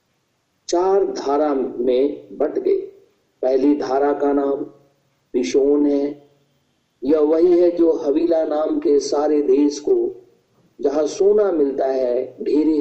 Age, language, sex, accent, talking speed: 50-69, Hindi, male, native, 120 wpm